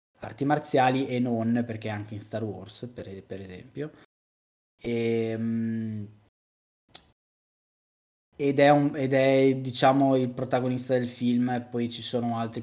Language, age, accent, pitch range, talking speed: Italian, 20-39, native, 115-135 Hz, 130 wpm